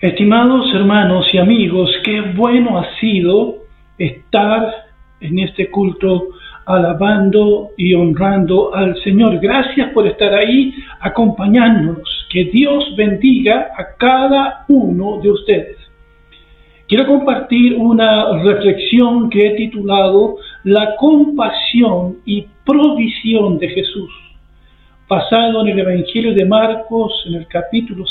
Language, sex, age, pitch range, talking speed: Spanish, male, 50-69, 185-240 Hz, 110 wpm